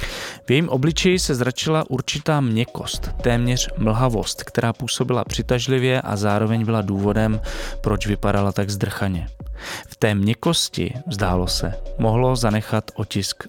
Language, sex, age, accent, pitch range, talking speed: Czech, male, 20-39, native, 105-135 Hz, 125 wpm